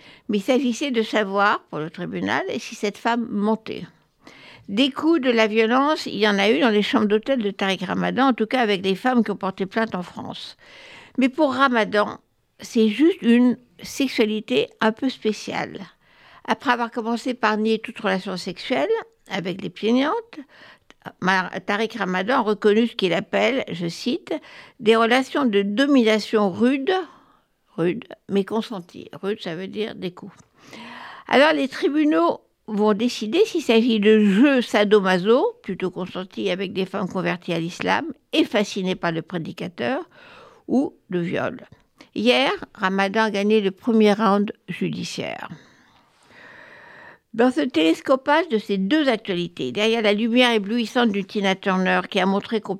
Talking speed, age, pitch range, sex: 155 wpm, 60-79, 195-250 Hz, female